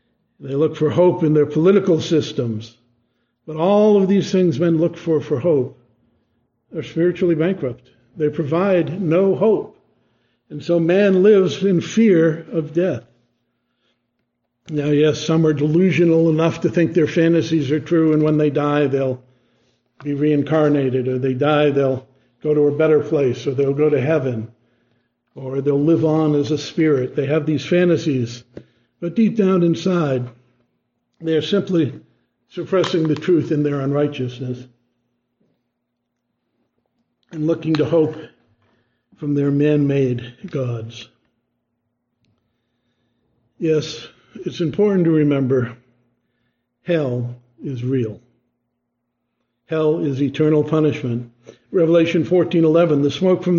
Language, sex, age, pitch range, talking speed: English, male, 60-79, 125-170 Hz, 130 wpm